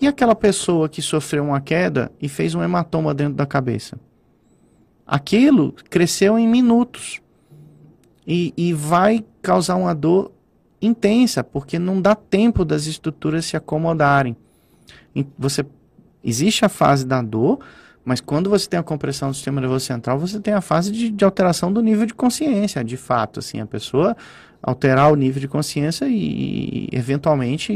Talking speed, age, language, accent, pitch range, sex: 155 wpm, 30-49, Portuguese, Brazilian, 145-190 Hz, male